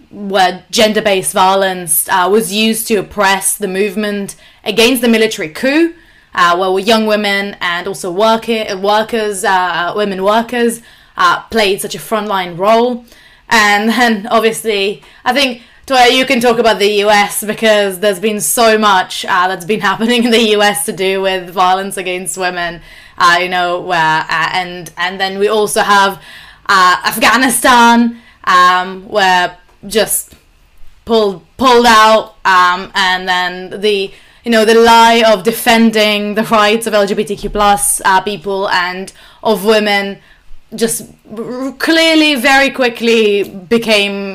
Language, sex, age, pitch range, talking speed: English, female, 20-39, 190-225 Hz, 145 wpm